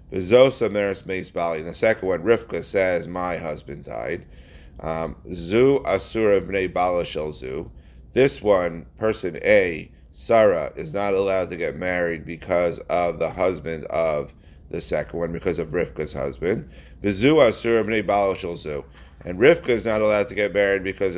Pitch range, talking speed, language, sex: 85-100 Hz, 115 wpm, English, male